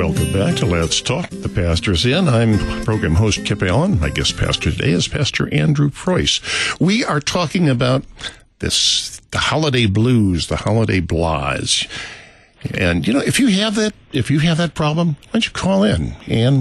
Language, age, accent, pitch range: English, 60-79, American, 95-150 Hz